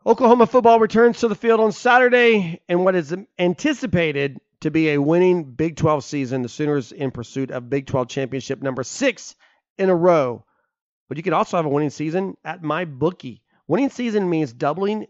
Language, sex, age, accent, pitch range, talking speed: English, male, 40-59, American, 150-205 Hz, 185 wpm